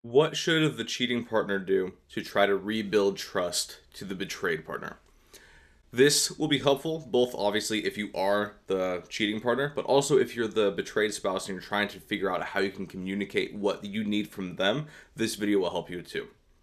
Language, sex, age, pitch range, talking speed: English, male, 20-39, 95-125 Hz, 200 wpm